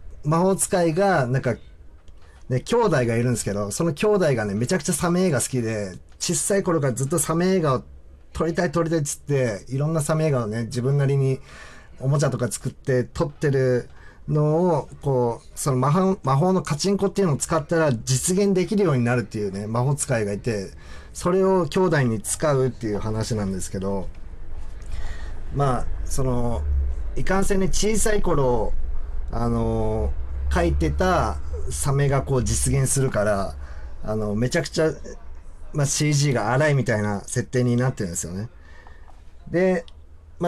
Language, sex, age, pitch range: Japanese, male, 40-59, 100-165 Hz